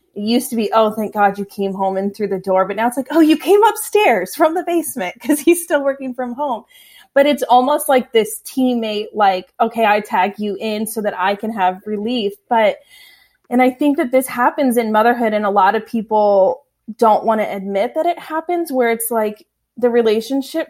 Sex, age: female, 20-39